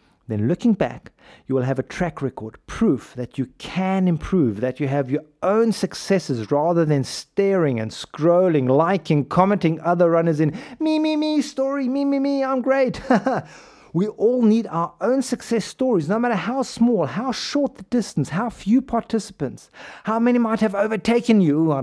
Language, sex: English, male